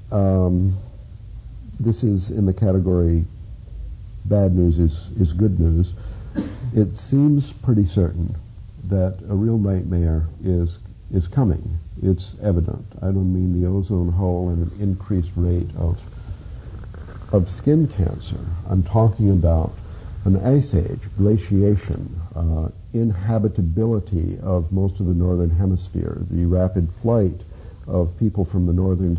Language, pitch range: English, 85-100 Hz